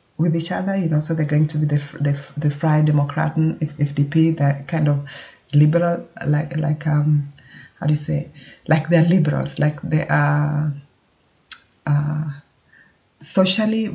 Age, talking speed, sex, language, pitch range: 30-49, 155 wpm, female, English, 145-160 Hz